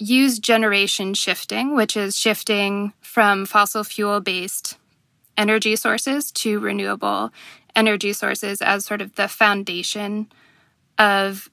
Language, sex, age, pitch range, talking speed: English, female, 20-39, 200-230 Hz, 110 wpm